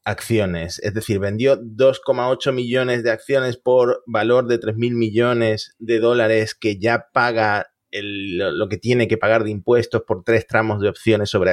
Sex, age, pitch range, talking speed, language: male, 30-49, 110-135 Hz, 170 wpm, Spanish